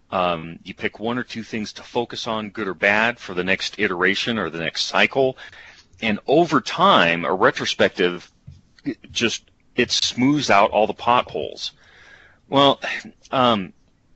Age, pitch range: 40-59, 95-120 Hz